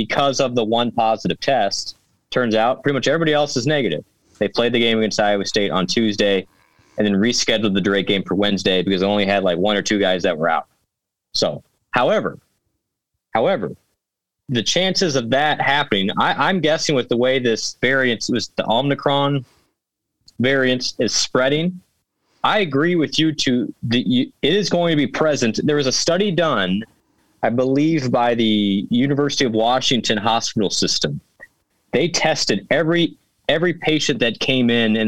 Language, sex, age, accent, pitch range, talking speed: English, male, 20-39, American, 110-155 Hz, 170 wpm